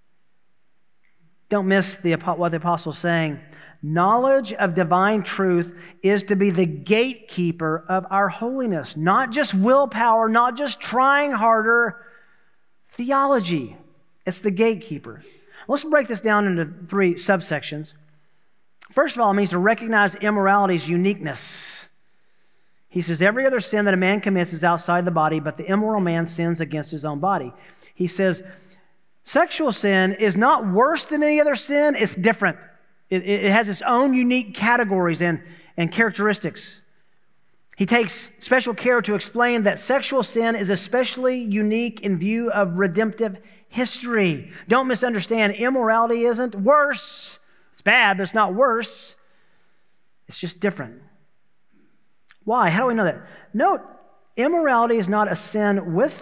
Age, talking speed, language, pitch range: 40-59, 145 wpm, English, 175-235 Hz